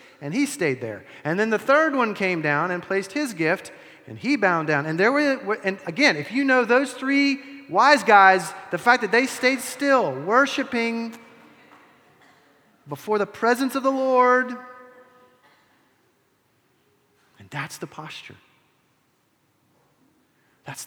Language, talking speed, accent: English, 140 wpm, American